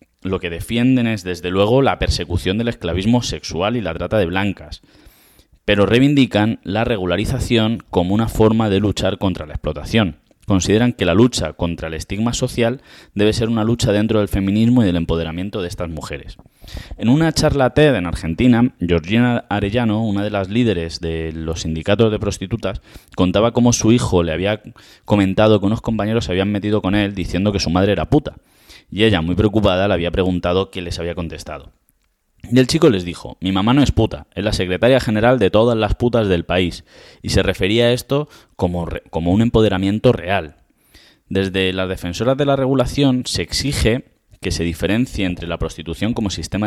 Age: 20-39